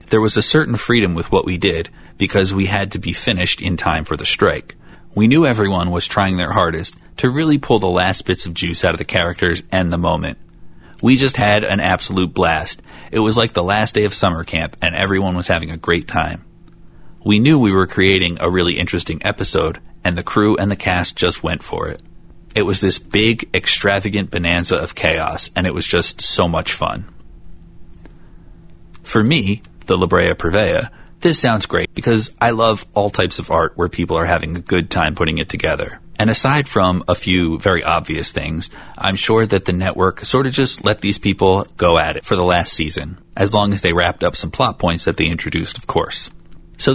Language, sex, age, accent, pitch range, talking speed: English, male, 30-49, American, 85-105 Hz, 210 wpm